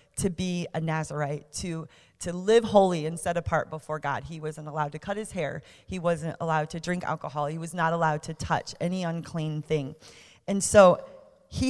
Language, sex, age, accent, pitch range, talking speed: English, female, 30-49, American, 155-195 Hz, 195 wpm